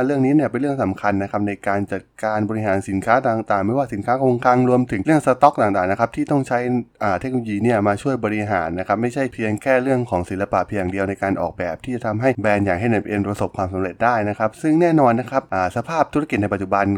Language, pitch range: Thai, 100-130 Hz